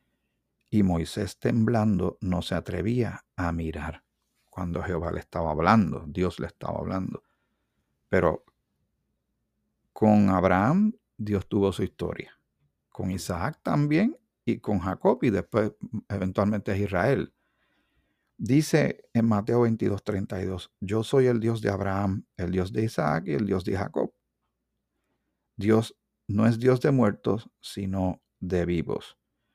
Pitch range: 90-115 Hz